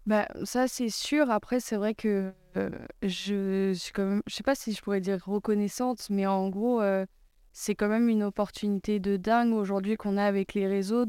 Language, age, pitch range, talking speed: French, 20-39, 195-225 Hz, 205 wpm